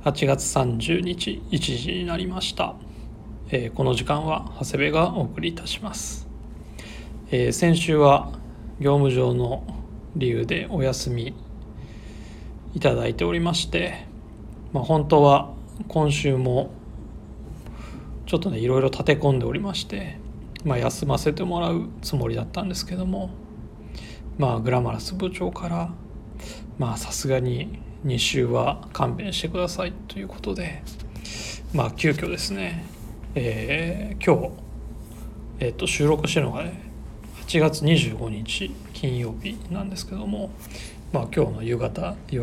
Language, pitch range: Japanese, 115-175 Hz